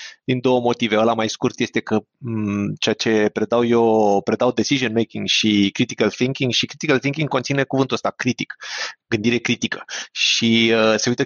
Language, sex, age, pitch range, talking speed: Romanian, male, 20-39, 115-160 Hz, 170 wpm